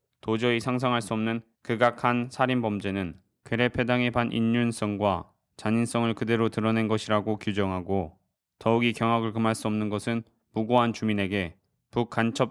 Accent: native